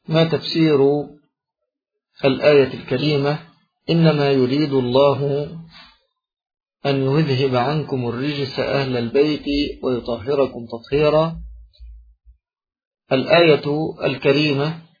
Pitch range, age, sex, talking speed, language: 140-170 Hz, 50-69, male, 70 wpm, Arabic